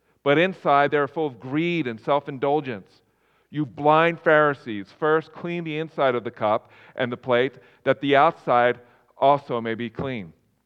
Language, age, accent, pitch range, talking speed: English, 40-59, American, 105-145 Hz, 165 wpm